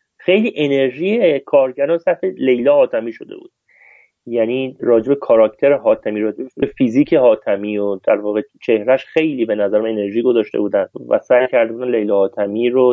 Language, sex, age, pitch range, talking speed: Persian, male, 30-49, 115-185 Hz, 150 wpm